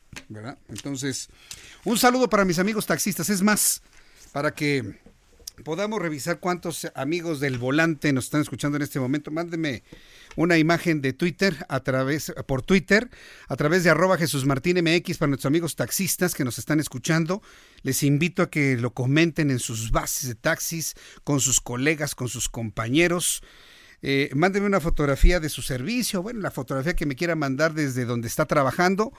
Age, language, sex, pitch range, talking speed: 50-69, Spanish, male, 135-170 Hz, 170 wpm